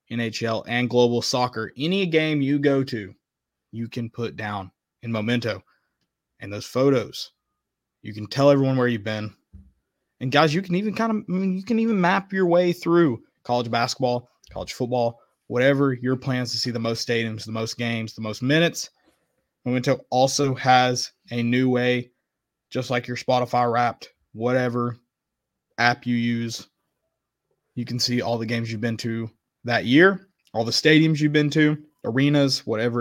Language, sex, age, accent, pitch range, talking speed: English, male, 20-39, American, 115-150 Hz, 170 wpm